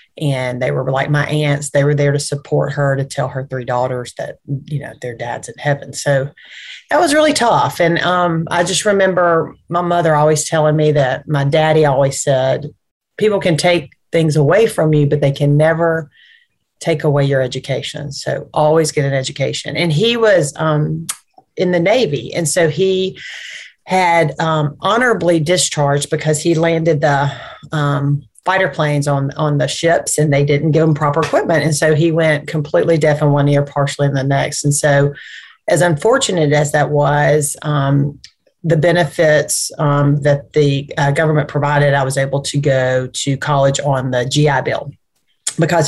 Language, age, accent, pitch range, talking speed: English, 40-59, American, 140-165 Hz, 180 wpm